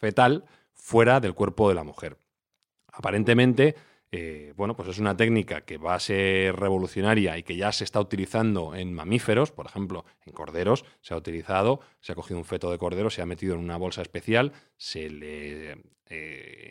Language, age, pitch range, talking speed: Spanish, 30-49, 90-115 Hz, 185 wpm